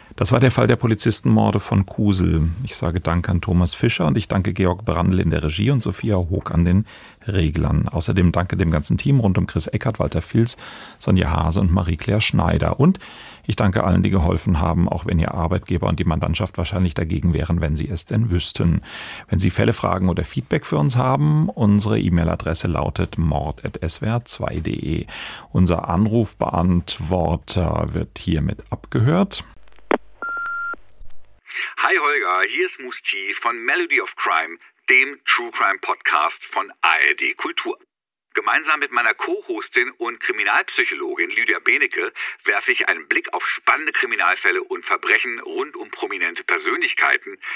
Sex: male